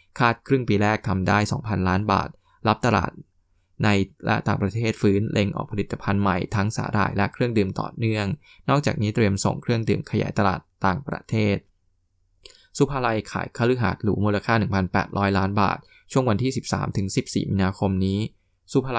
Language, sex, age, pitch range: Thai, male, 20-39, 95-115 Hz